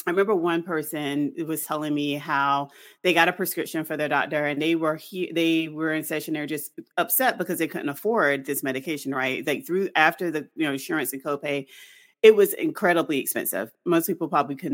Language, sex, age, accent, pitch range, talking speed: English, female, 30-49, American, 155-210 Hz, 205 wpm